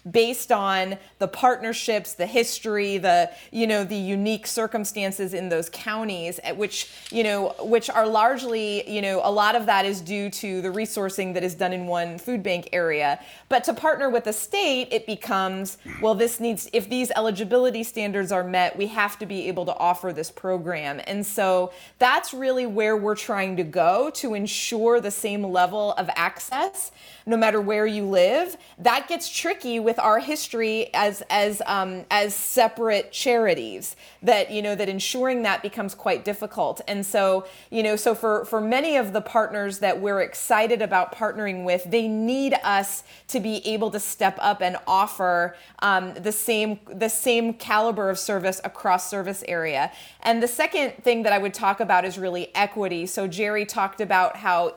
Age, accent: 30-49, American